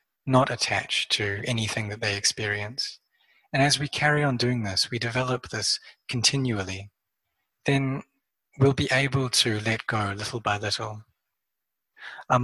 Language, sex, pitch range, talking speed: English, male, 110-130 Hz, 140 wpm